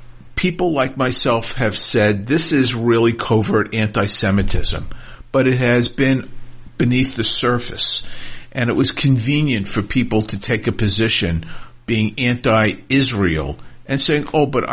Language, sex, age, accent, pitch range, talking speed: English, male, 50-69, American, 105-130 Hz, 135 wpm